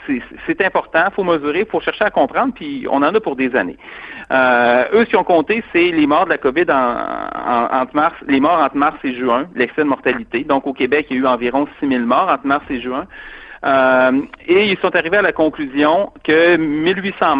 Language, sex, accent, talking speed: French, male, Canadian, 230 wpm